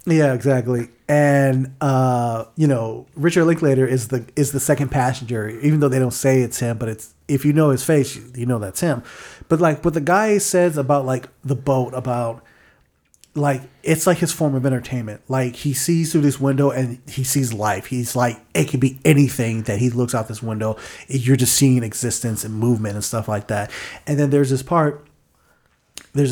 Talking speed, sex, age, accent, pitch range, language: 205 wpm, male, 30-49, American, 120-145 Hz, English